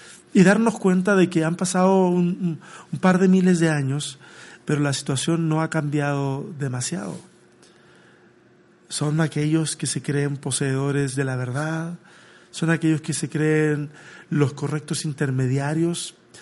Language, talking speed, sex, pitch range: Spanish, 140 wpm, male, 140-185 Hz